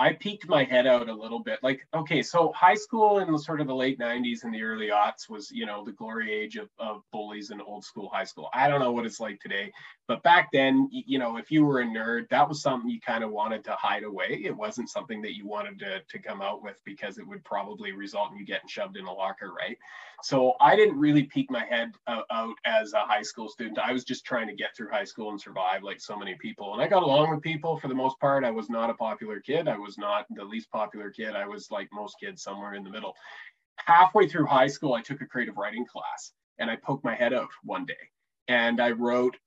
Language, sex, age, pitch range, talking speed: English, male, 20-39, 115-165 Hz, 255 wpm